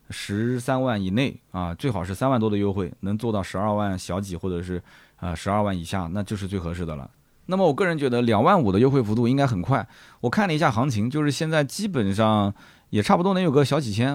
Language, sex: Chinese, male